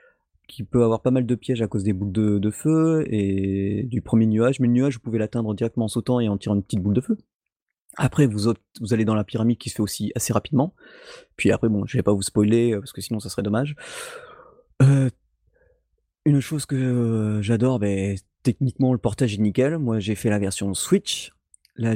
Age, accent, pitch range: 30-49, French, 105-130 Hz